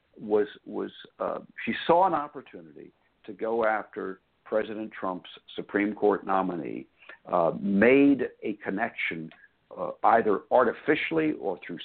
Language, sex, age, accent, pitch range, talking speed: English, male, 60-79, American, 100-135 Hz, 120 wpm